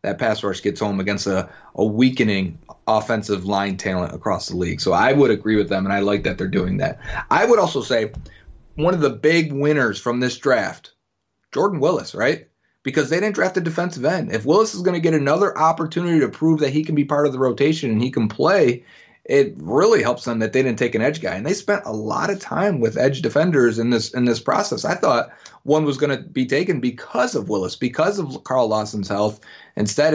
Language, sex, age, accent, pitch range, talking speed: English, male, 30-49, American, 110-145 Hz, 230 wpm